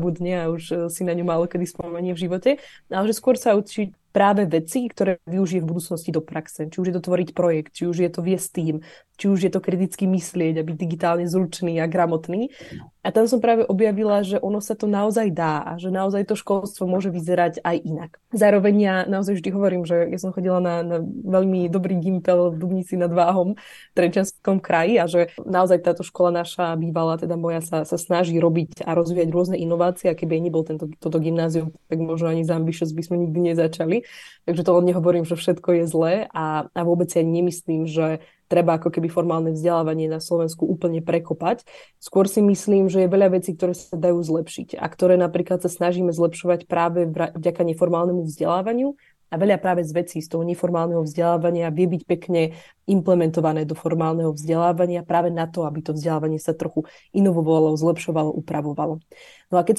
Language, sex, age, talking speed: Slovak, female, 20-39, 195 wpm